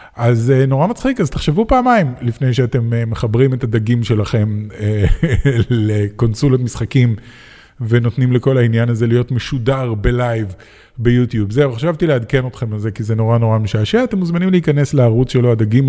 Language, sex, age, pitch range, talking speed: Hebrew, male, 20-39, 120-155 Hz, 145 wpm